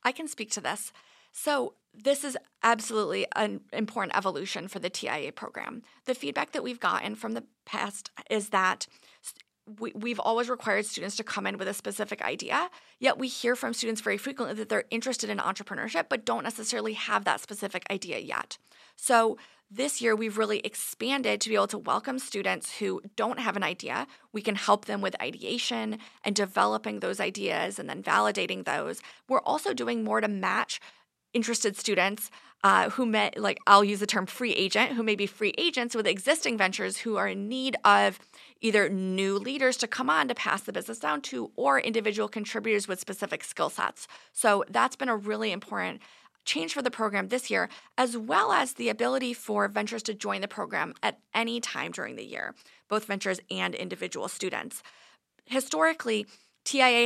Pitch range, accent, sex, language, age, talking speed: 205-255 Hz, American, female, English, 30-49, 185 wpm